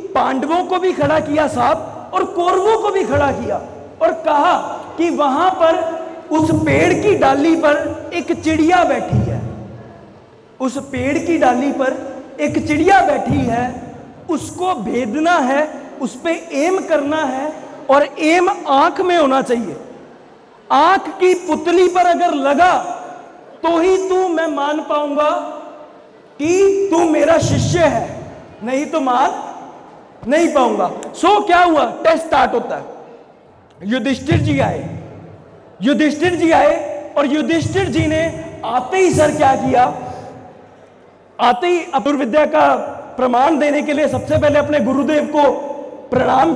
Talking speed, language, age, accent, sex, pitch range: 140 wpm, Hindi, 40-59, native, male, 280-345 Hz